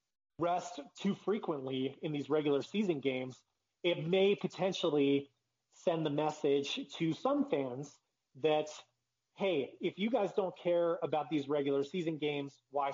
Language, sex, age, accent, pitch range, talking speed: English, male, 30-49, American, 140-175 Hz, 140 wpm